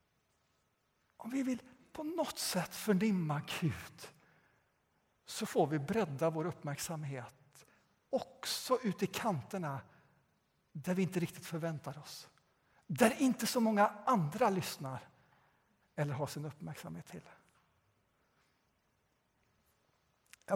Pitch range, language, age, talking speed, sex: 155-215 Hz, Swedish, 60-79, 105 wpm, male